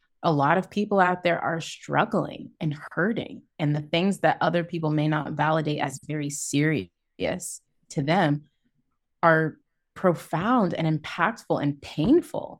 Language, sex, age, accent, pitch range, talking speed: English, female, 20-39, American, 140-160 Hz, 145 wpm